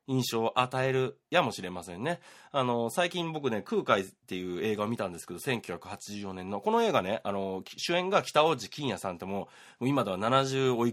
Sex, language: male, Japanese